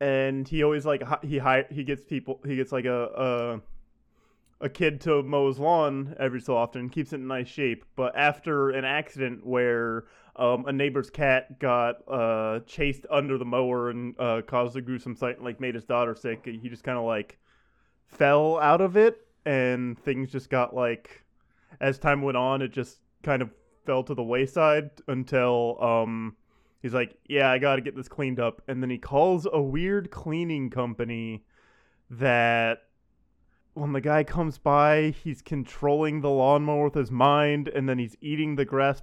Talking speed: 190 wpm